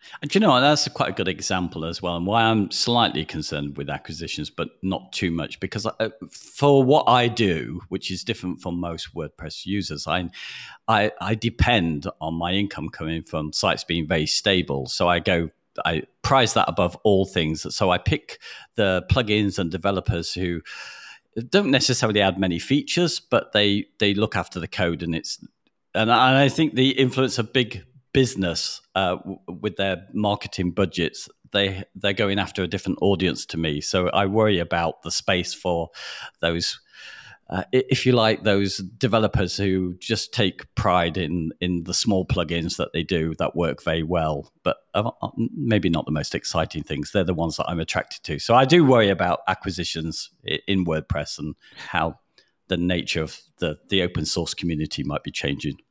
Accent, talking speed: British, 180 wpm